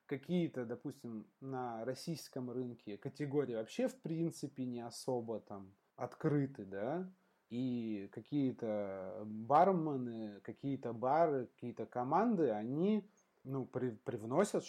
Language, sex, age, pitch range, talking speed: Russian, male, 20-39, 110-145 Hz, 100 wpm